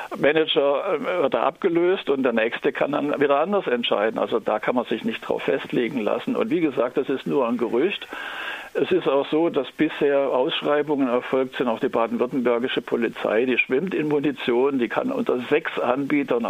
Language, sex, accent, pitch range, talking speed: German, male, German, 125-155 Hz, 185 wpm